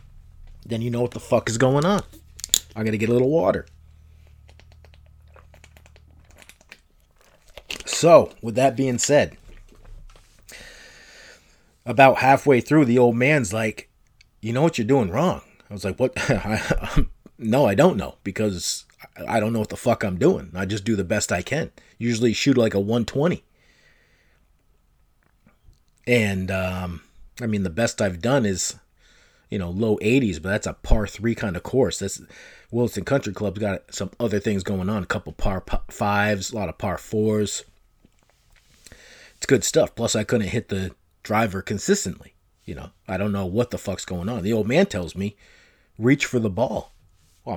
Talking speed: 170 wpm